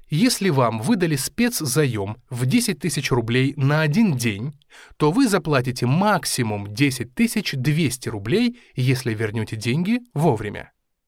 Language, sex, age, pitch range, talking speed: Russian, male, 20-39, 125-195 Hz, 120 wpm